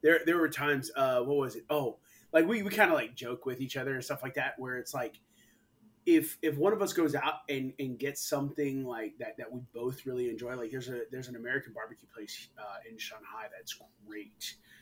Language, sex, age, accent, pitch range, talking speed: English, male, 20-39, American, 125-160 Hz, 230 wpm